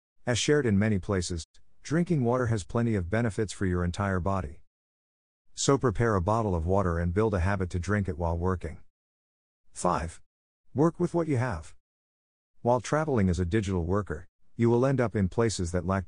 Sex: male